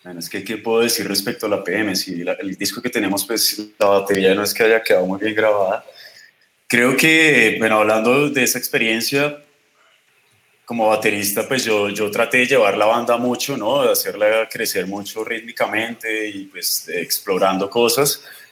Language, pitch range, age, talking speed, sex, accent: Spanish, 110-135 Hz, 20-39, 180 wpm, male, Colombian